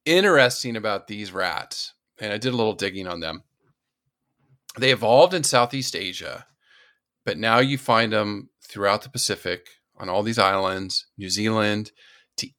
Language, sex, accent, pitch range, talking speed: English, male, American, 100-130 Hz, 155 wpm